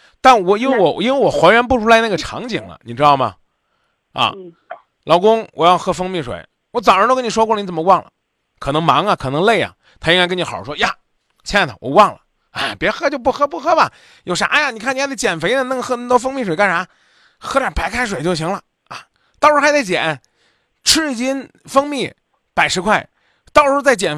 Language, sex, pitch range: Chinese, male, 170-255 Hz